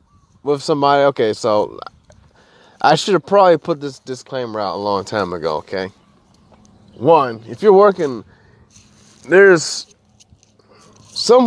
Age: 20-39